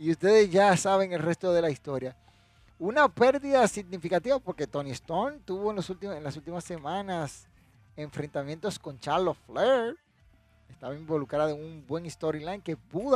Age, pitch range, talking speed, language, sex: 30-49, 135-200 Hz, 160 wpm, Spanish, male